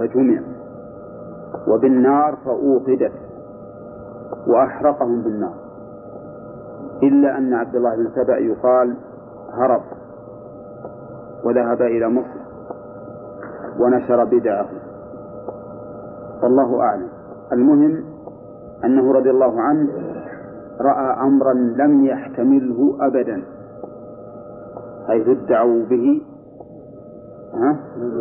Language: Arabic